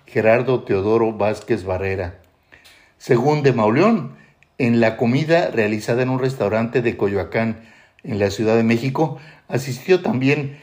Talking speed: 130 wpm